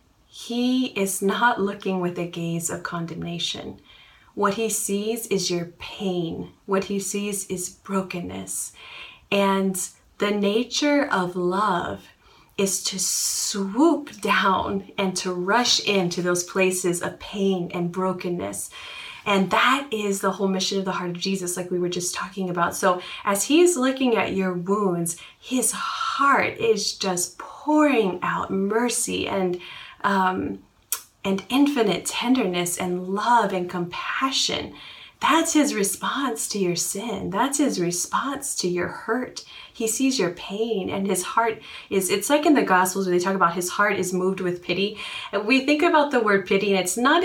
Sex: female